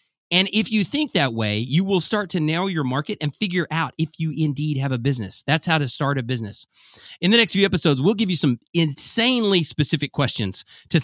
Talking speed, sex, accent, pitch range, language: 225 wpm, male, American, 140-205 Hz, English